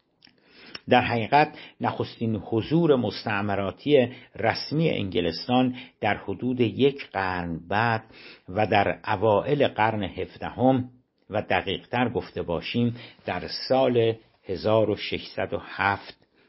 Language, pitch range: Persian, 100-130 Hz